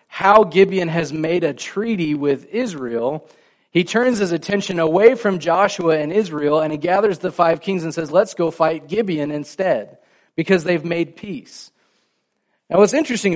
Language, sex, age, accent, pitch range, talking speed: English, male, 30-49, American, 155-195 Hz, 165 wpm